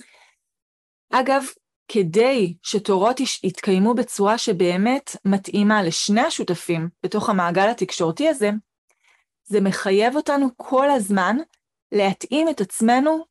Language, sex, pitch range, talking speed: Hebrew, female, 185-245 Hz, 95 wpm